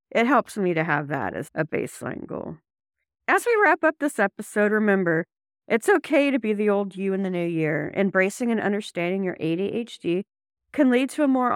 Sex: female